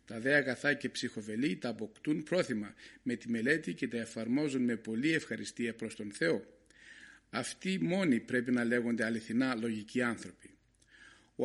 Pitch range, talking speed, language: 120-155 Hz, 145 wpm, Greek